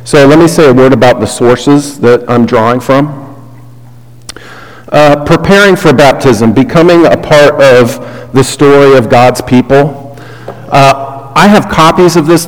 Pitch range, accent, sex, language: 125-150 Hz, American, male, English